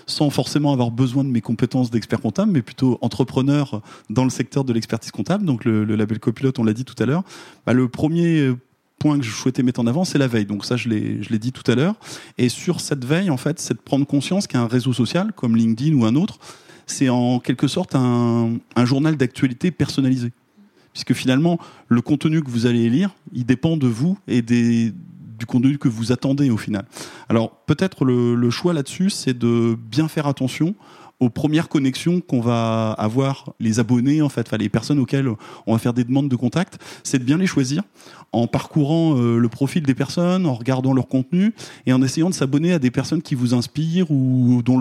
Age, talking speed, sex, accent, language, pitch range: 30-49, 215 wpm, male, French, French, 120-155 Hz